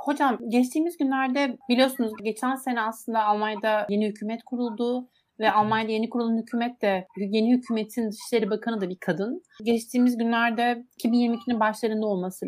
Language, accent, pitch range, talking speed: Turkish, native, 215-255 Hz, 140 wpm